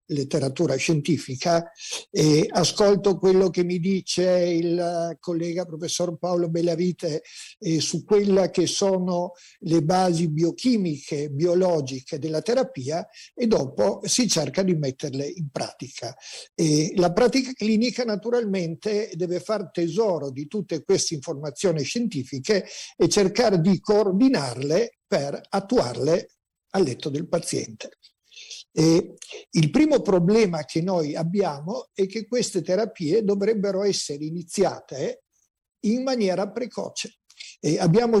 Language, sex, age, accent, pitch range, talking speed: Italian, male, 60-79, native, 165-205 Hz, 115 wpm